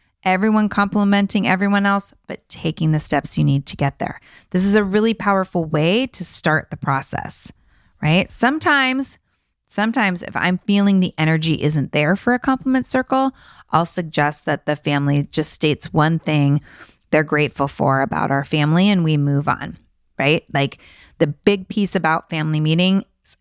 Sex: female